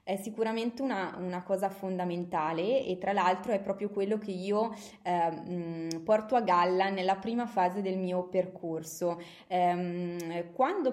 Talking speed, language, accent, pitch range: 145 wpm, Italian, native, 175-215 Hz